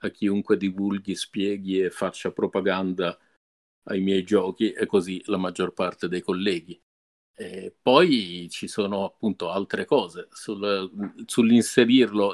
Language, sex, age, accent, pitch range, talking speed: Italian, male, 50-69, native, 100-120 Hz, 115 wpm